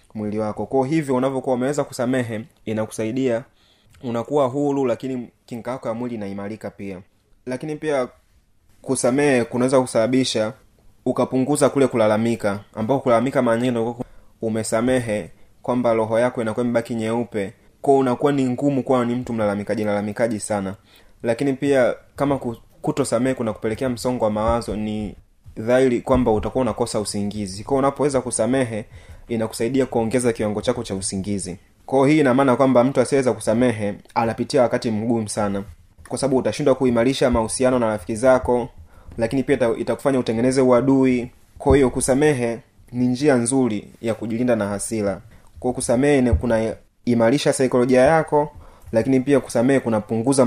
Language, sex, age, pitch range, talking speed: Swahili, male, 20-39, 105-130 Hz, 135 wpm